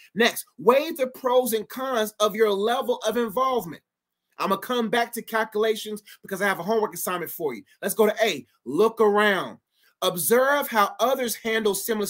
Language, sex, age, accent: English, male, 30-49, American